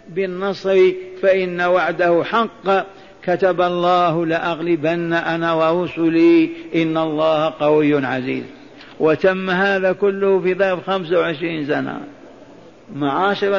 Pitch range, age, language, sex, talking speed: 175-200 Hz, 60-79, Arabic, male, 95 wpm